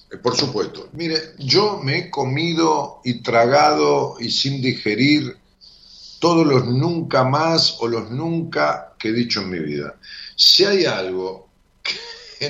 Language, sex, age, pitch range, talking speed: Spanish, male, 50-69, 110-160 Hz, 140 wpm